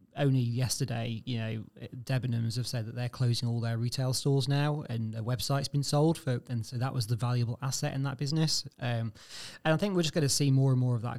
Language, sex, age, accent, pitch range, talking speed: English, male, 30-49, British, 120-140 Hz, 240 wpm